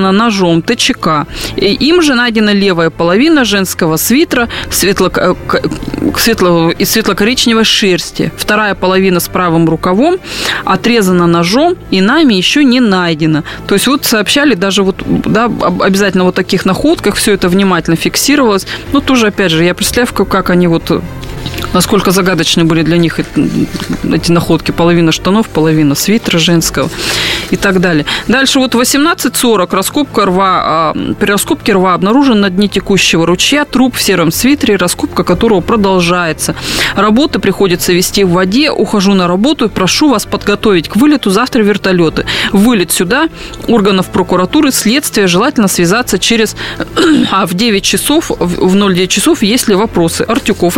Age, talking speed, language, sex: 20-39, 145 wpm, Russian, female